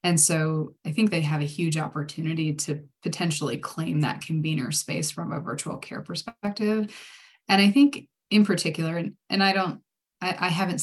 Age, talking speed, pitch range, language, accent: 20-39, 175 wpm, 160-195 Hz, English, American